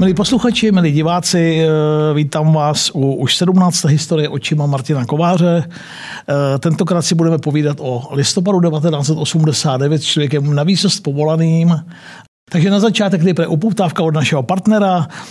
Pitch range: 150-180 Hz